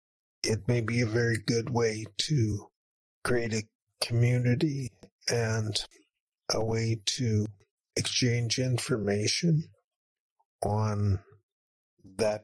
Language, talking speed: English, 90 wpm